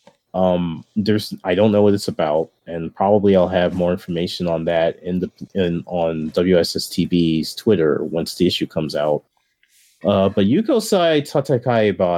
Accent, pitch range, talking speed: American, 95-120 Hz, 155 wpm